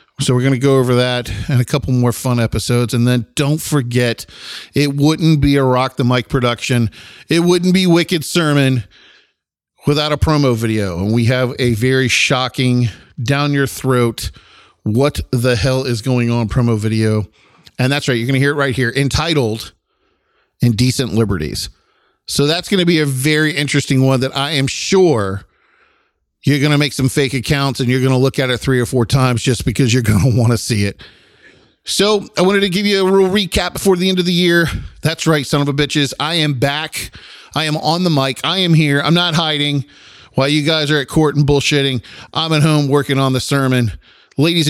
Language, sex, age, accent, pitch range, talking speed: English, male, 40-59, American, 125-150 Hz, 210 wpm